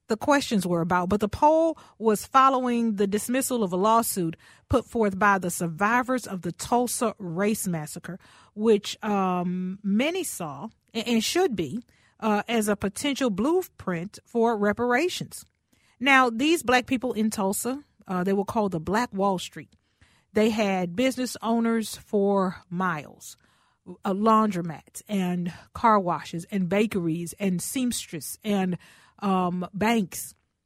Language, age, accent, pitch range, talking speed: English, 40-59, American, 185-240 Hz, 135 wpm